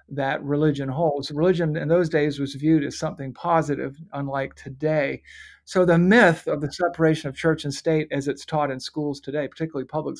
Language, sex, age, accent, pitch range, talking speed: English, male, 50-69, American, 135-165 Hz, 190 wpm